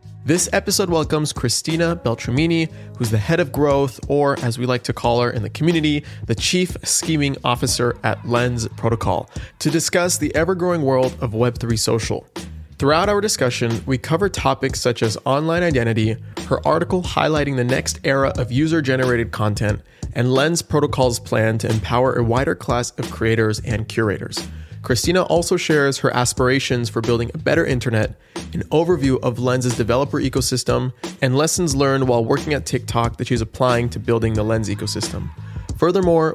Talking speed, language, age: 165 wpm, English, 20-39